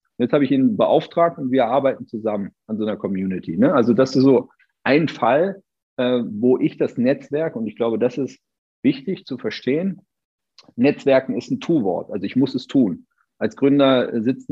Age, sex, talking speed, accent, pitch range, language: 40-59, male, 180 wpm, German, 115-170 Hz, German